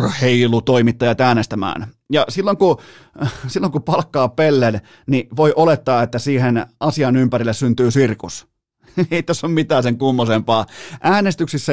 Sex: male